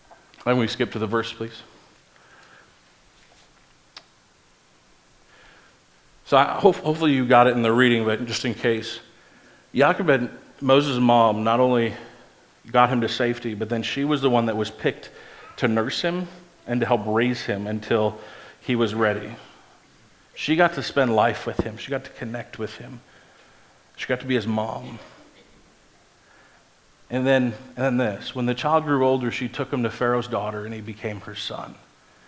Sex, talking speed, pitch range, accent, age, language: male, 165 wpm, 110-130 Hz, American, 40-59, English